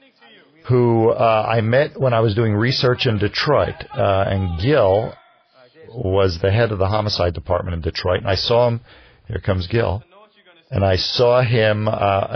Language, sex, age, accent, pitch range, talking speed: English, male, 50-69, American, 95-120 Hz, 170 wpm